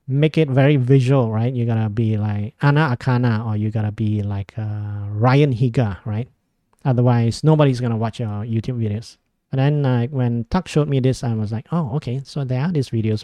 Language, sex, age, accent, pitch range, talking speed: English, male, 30-49, Japanese, 115-145 Hz, 210 wpm